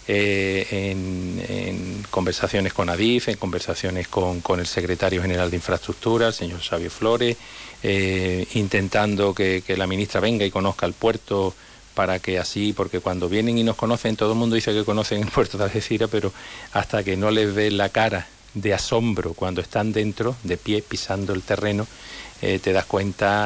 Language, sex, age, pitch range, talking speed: Spanish, male, 40-59, 95-105 Hz, 180 wpm